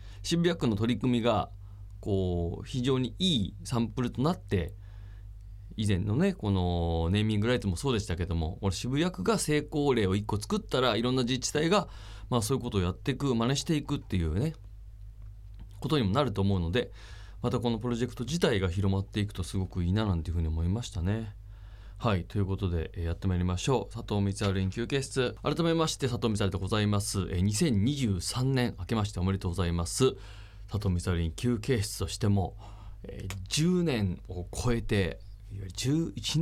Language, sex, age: Japanese, male, 20-39